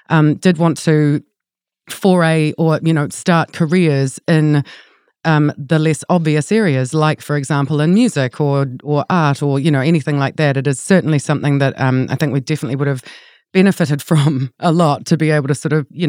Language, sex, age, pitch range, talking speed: English, female, 30-49, 140-170 Hz, 200 wpm